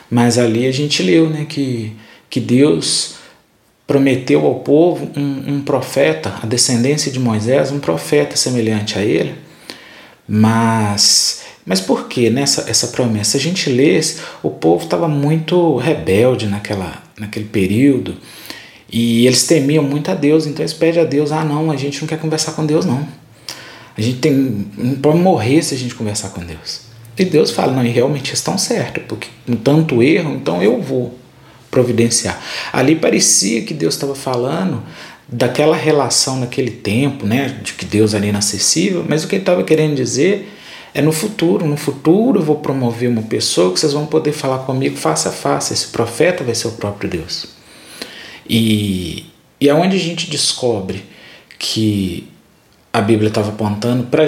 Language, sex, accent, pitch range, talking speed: Portuguese, male, Brazilian, 110-155 Hz, 170 wpm